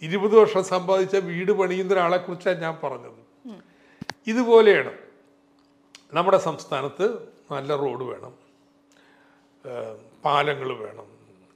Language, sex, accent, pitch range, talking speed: Malayalam, male, native, 140-185 Hz, 85 wpm